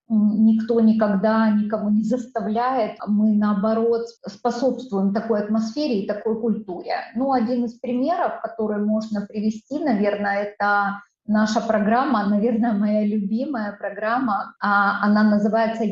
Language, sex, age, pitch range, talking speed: Russian, female, 20-39, 215-245 Hz, 115 wpm